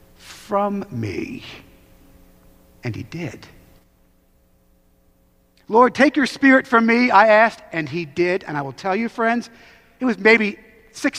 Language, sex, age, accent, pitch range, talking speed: English, male, 50-69, American, 140-220 Hz, 140 wpm